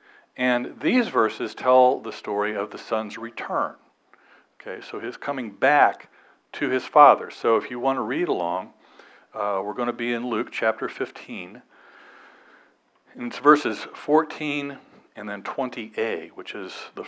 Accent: American